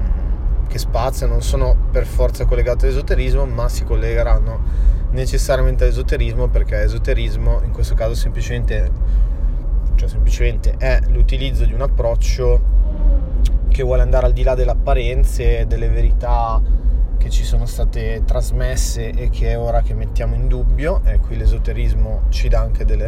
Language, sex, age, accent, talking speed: Italian, male, 20-39, native, 145 wpm